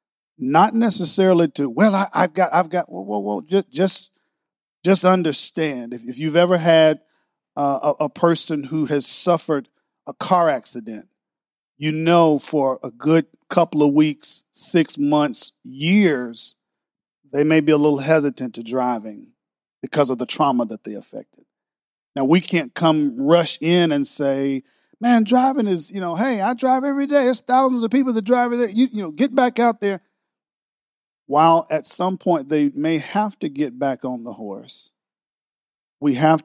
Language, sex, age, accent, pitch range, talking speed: English, male, 40-59, American, 140-185 Hz, 170 wpm